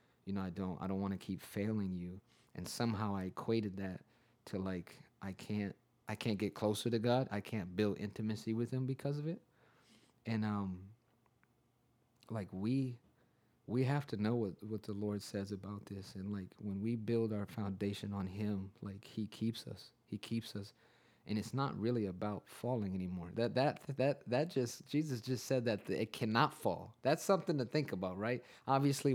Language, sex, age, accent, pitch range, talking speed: English, male, 30-49, American, 105-125 Hz, 190 wpm